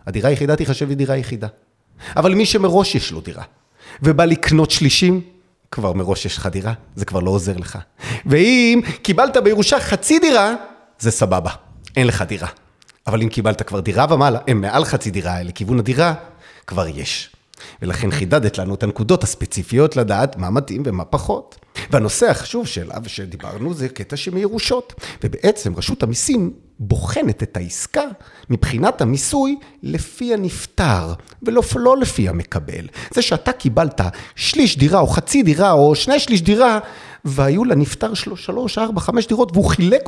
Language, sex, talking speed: Hebrew, male, 150 wpm